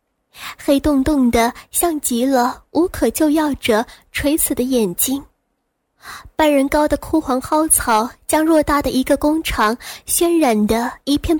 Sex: female